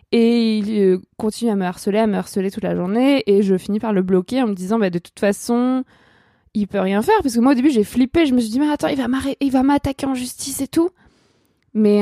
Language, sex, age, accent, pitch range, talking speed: French, female, 20-39, French, 200-240 Hz, 265 wpm